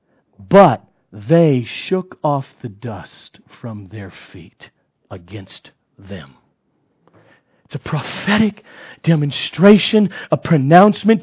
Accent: American